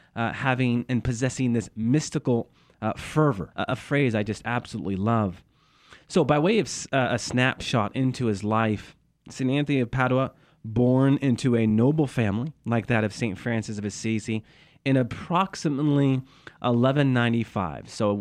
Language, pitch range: English, 115-150 Hz